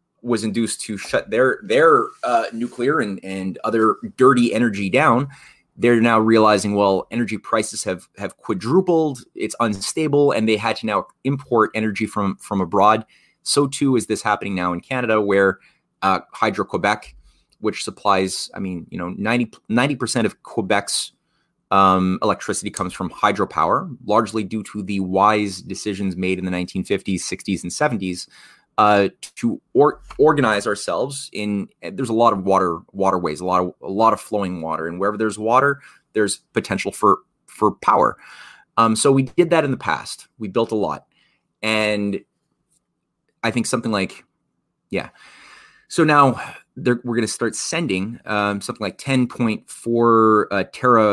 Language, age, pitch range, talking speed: English, 20-39, 95-120 Hz, 160 wpm